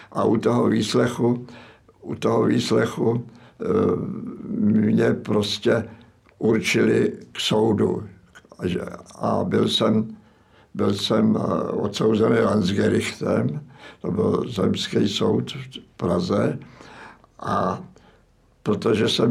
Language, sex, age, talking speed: Slovak, male, 60-79, 85 wpm